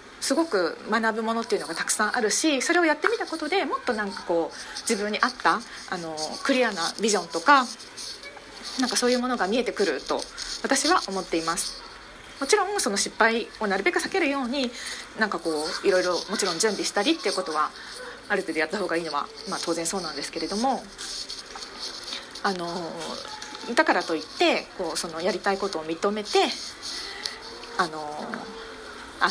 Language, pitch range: Japanese, 185-265 Hz